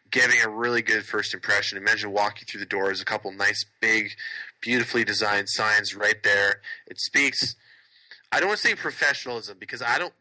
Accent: American